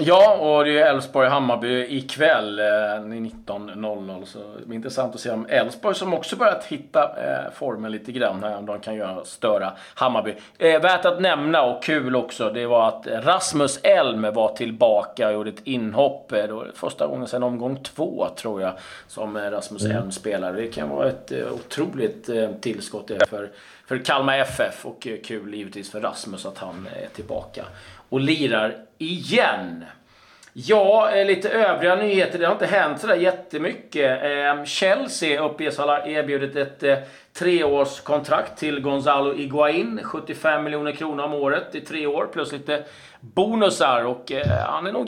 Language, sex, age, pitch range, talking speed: Swedish, male, 30-49, 110-155 Hz, 150 wpm